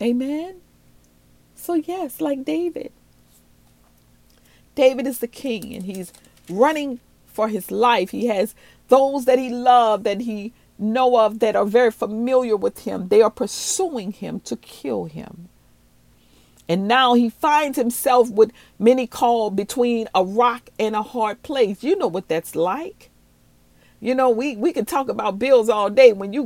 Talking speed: 160 wpm